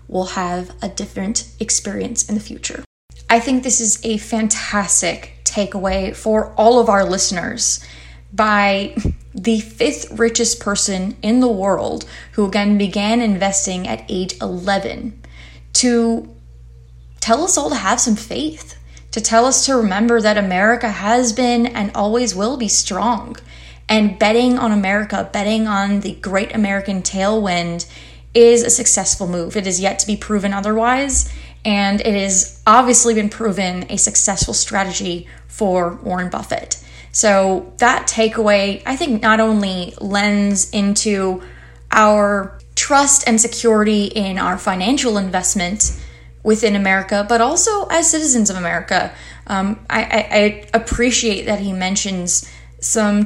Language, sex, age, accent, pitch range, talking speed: English, female, 10-29, American, 190-230 Hz, 140 wpm